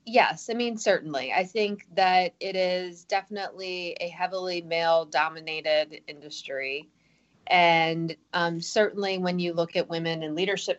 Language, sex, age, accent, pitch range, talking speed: English, female, 20-39, American, 155-185 Hz, 135 wpm